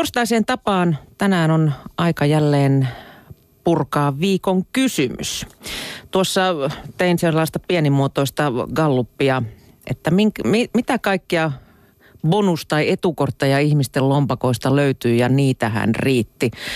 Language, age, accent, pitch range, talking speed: Finnish, 40-59, native, 125-160 Hz, 100 wpm